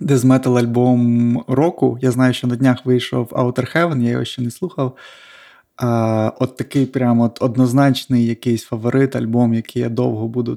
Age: 20-39